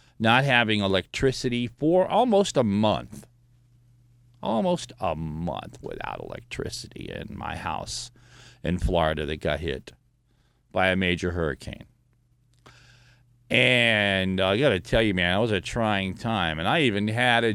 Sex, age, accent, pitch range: male, 40-59, American, 95-120 Hz